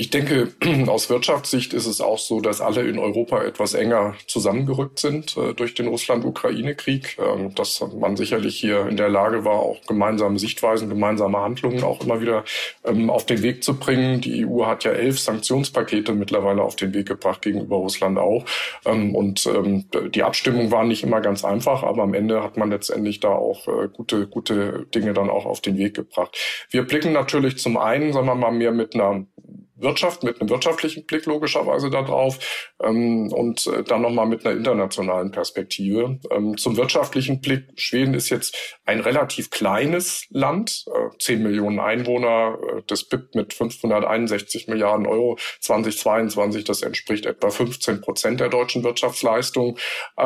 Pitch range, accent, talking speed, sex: 105-130 Hz, German, 165 wpm, male